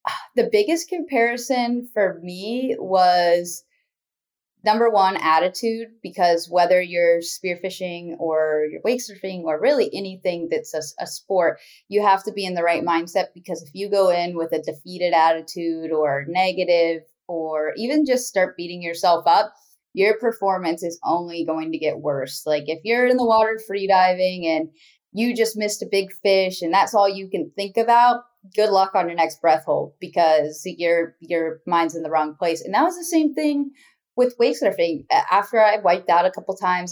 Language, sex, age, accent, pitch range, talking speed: English, female, 20-39, American, 170-215 Hz, 180 wpm